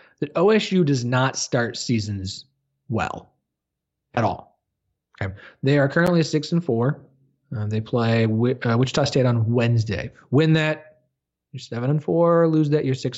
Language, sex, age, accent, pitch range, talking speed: English, male, 20-39, American, 120-150 Hz, 155 wpm